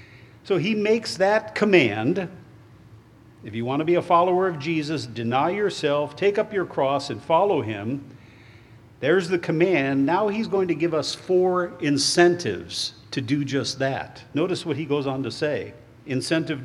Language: English